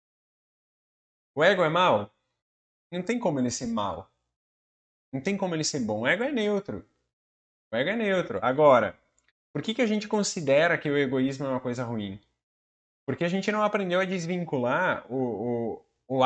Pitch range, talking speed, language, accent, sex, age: 125-180 Hz, 175 wpm, Portuguese, Brazilian, male, 20-39